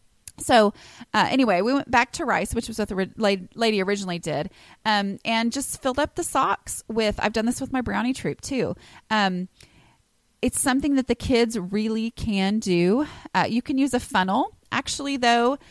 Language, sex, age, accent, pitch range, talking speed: English, female, 30-49, American, 185-235 Hz, 185 wpm